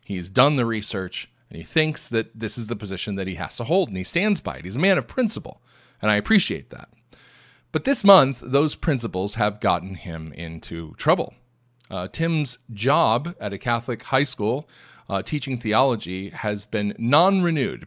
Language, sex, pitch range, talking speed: English, male, 100-130 Hz, 185 wpm